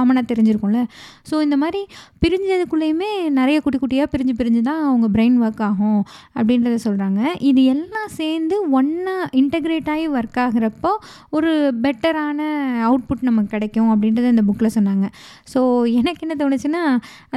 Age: 20-39